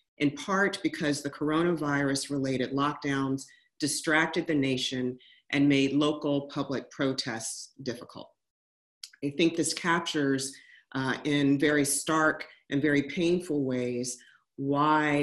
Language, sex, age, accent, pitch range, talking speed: English, female, 40-59, American, 135-155 Hz, 110 wpm